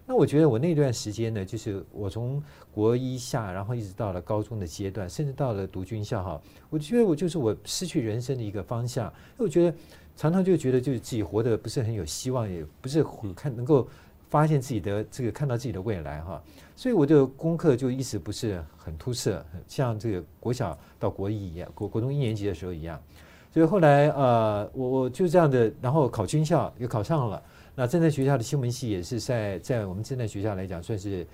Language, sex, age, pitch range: Chinese, male, 50-69, 95-135 Hz